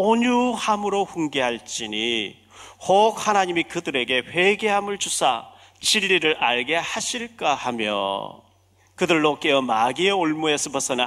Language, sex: Korean, male